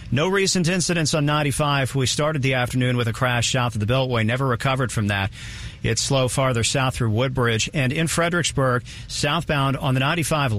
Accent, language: American, English